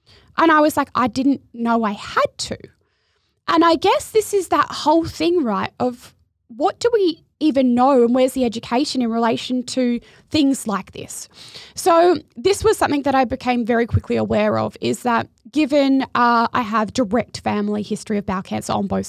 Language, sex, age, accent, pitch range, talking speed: English, female, 20-39, Australian, 215-285 Hz, 190 wpm